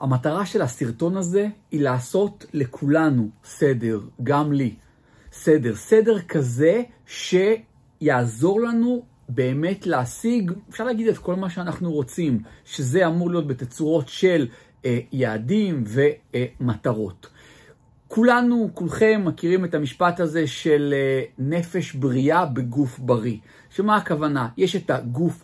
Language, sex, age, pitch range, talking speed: Hebrew, male, 50-69, 130-180 Hz, 120 wpm